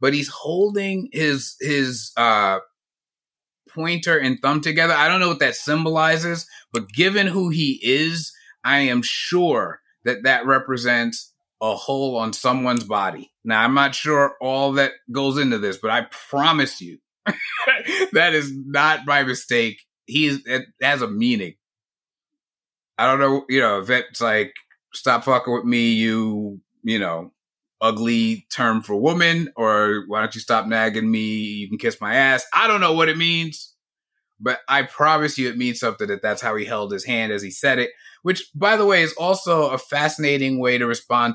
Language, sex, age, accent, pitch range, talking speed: English, male, 30-49, American, 115-160 Hz, 175 wpm